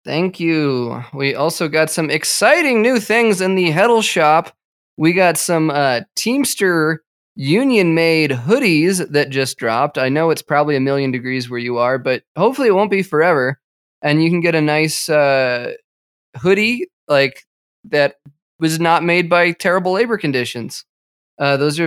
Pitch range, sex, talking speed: 135-175 Hz, male, 160 wpm